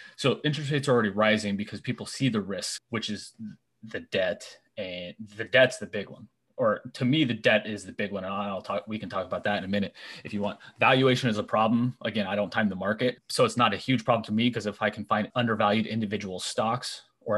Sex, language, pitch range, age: male, English, 105-130 Hz, 30-49